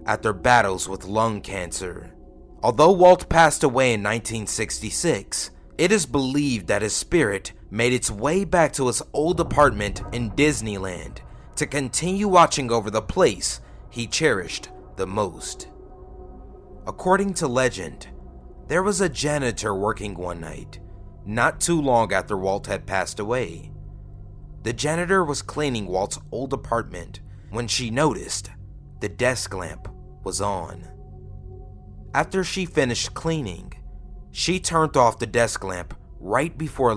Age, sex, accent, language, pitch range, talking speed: 30-49, male, American, English, 95-145 Hz, 135 wpm